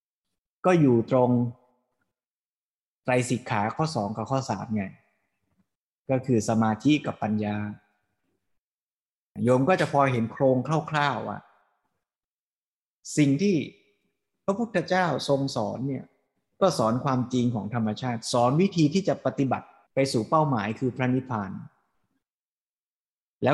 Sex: male